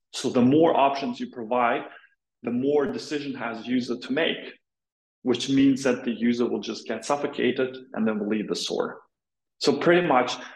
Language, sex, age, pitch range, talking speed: English, male, 30-49, 115-140 Hz, 175 wpm